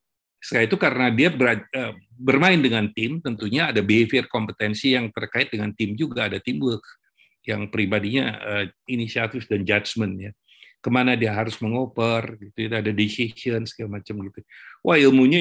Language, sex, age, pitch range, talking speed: Indonesian, male, 50-69, 110-130 Hz, 135 wpm